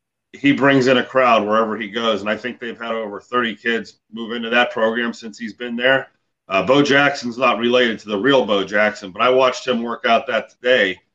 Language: English